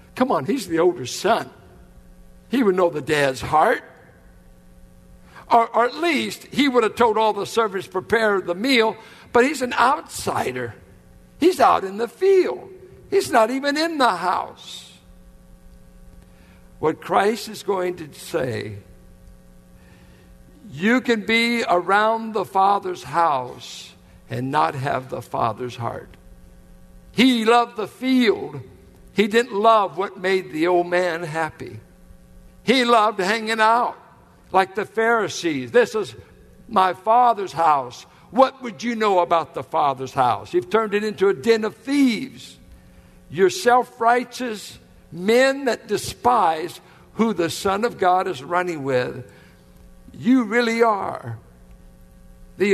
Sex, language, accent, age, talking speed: male, English, American, 60-79, 135 wpm